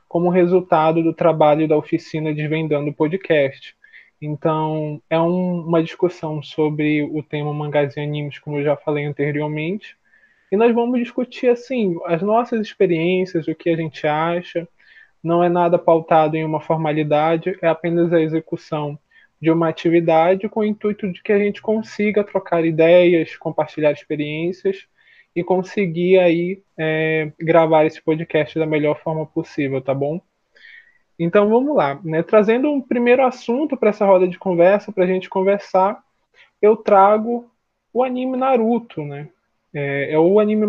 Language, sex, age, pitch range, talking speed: Portuguese, male, 20-39, 155-210 Hz, 145 wpm